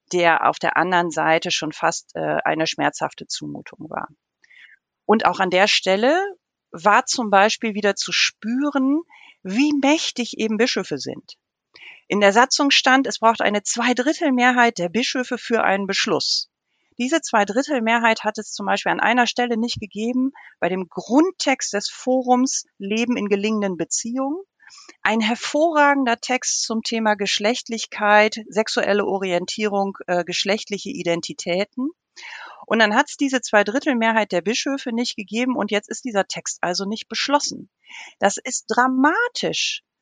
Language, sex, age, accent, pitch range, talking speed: German, female, 40-59, German, 200-260 Hz, 140 wpm